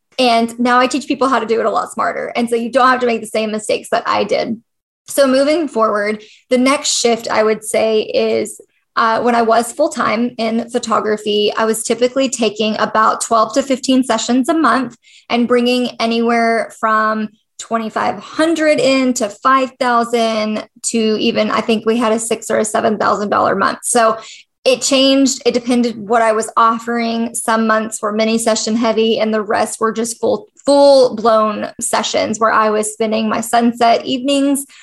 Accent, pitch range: American, 220-255 Hz